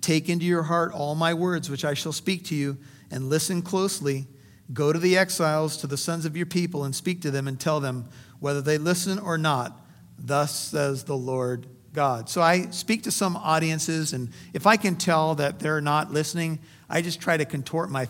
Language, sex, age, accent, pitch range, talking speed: English, male, 50-69, American, 140-170 Hz, 210 wpm